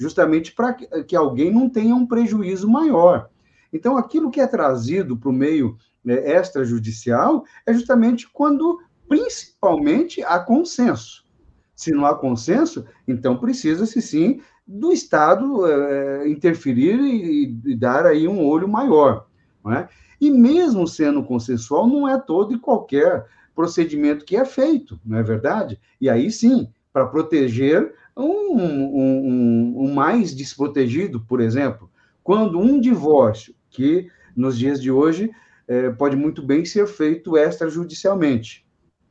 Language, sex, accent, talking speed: Portuguese, male, Brazilian, 130 wpm